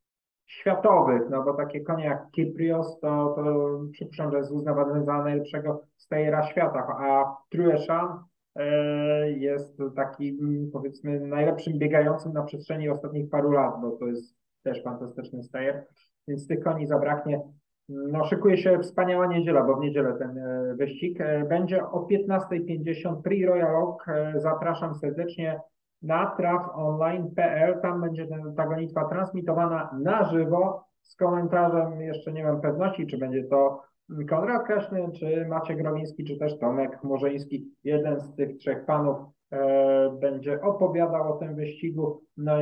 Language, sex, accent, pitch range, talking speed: Polish, male, native, 135-165 Hz, 135 wpm